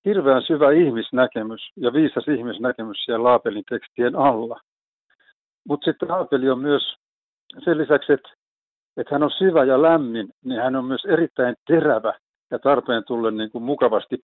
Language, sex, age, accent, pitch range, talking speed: Finnish, male, 60-79, native, 110-145 Hz, 150 wpm